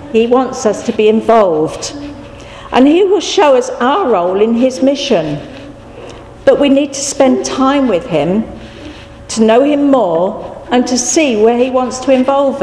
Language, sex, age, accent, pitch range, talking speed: English, female, 50-69, British, 190-255 Hz, 170 wpm